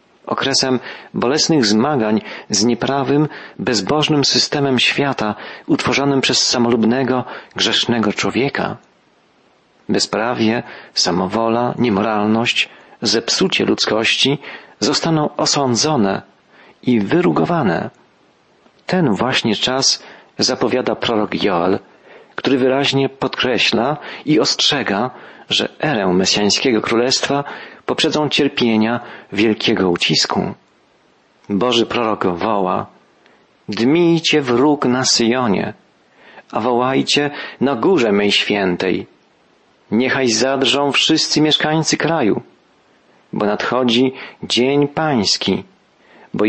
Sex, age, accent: male, 40-59, native